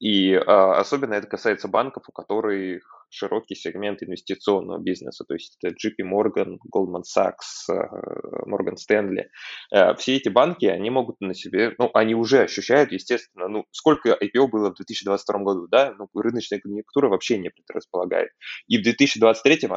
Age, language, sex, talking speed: 20-39, Russian, male, 160 wpm